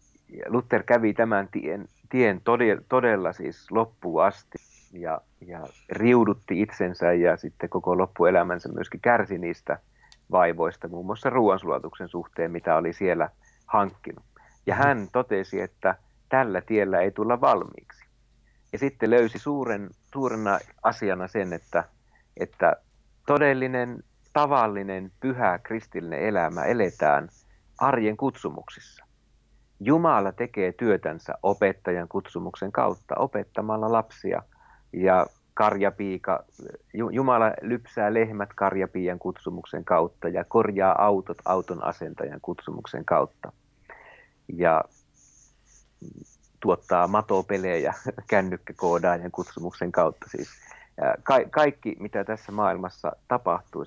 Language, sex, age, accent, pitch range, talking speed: Finnish, male, 50-69, native, 95-120 Hz, 100 wpm